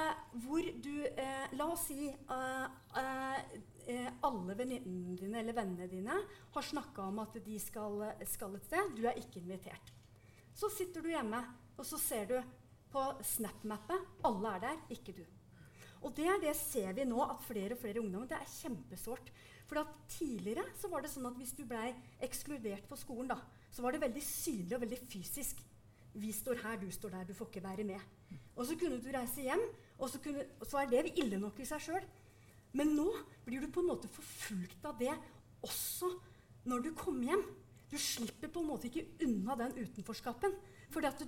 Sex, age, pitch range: female, 30-49, 210-290 Hz